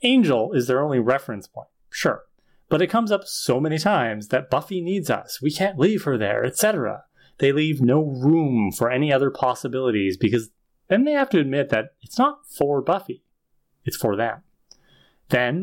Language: English